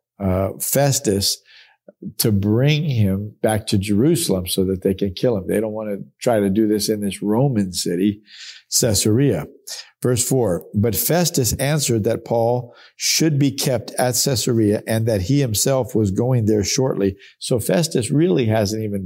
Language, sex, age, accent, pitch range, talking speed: English, male, 50-69, American, 105-130 Hz, 165 wpm